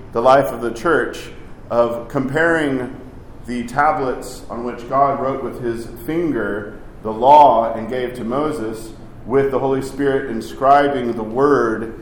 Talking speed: 145 wpm